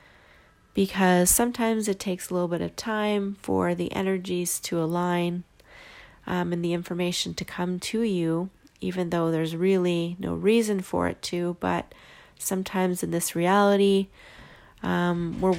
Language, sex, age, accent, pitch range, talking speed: English, female, 30-49, American, 165-190 Hz, 145 wpm